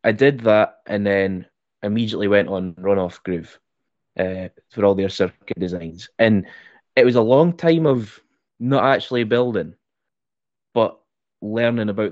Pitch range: 95-110 Hz